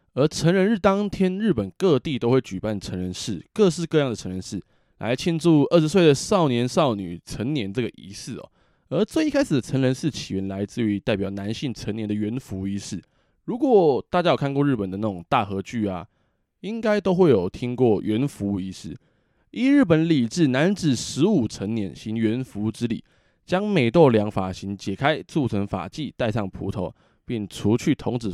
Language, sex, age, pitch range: Chinese, male, 20-39, 100-160 Hz